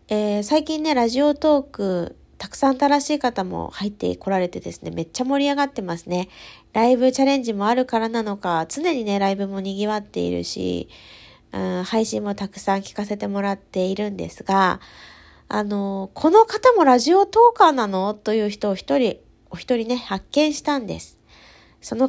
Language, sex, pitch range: Japanese, female, 185-270 Hz